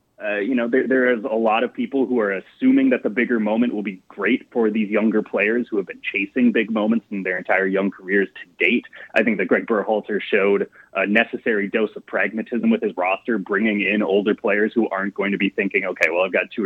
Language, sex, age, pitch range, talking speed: English, male, 20-39, 100-130 Hz, 240 wpm